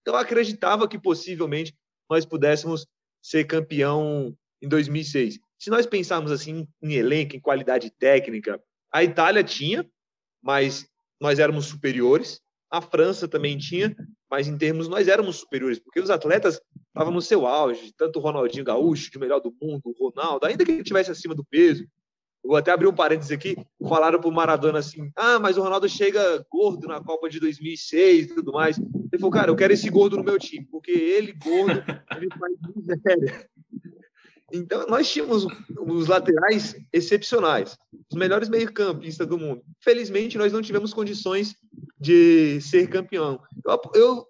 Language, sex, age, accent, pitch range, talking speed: Portuguese, male, 30-49, Brazilian, 150-205 Hz, 165 wpm